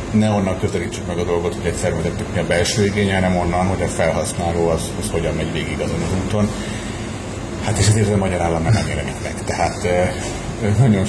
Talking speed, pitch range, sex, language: 190 wpm, 85-105 Hz, male, Hungarian